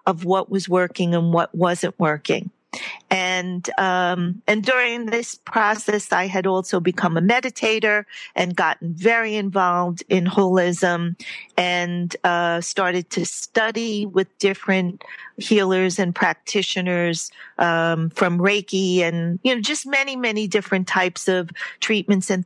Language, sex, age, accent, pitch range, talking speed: English, female, 40-59, American, 180-215 Hz, 135 wpm